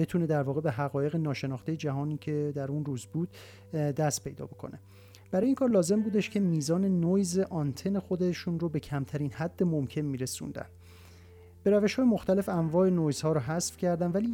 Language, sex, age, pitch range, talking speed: Persian, male, 40-59, 135-180 Hz, 175 wpm